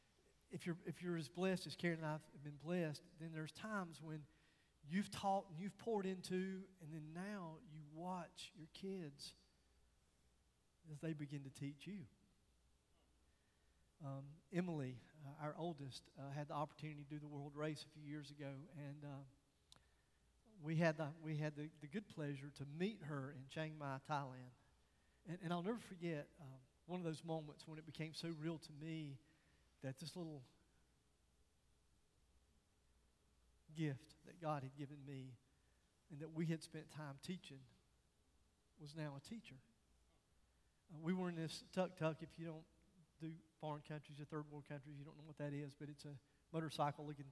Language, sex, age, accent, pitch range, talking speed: English, male, 40-59, American, 135-160 Hz, 170 wpm